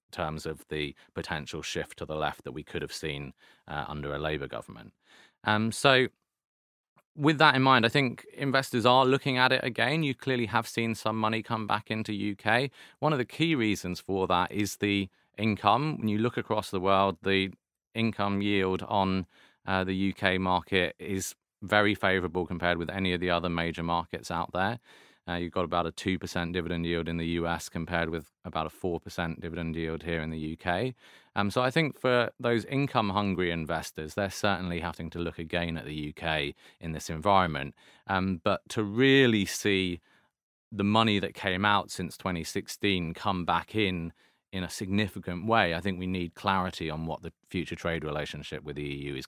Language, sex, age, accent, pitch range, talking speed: English, male, 30-49, British, 85-105 Hz, 190 wpm